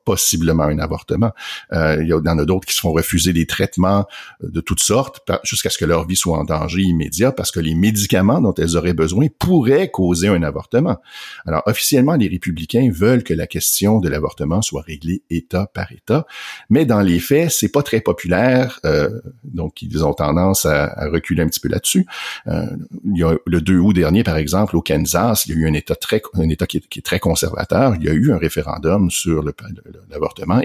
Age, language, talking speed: 50-69, French, 215 wpm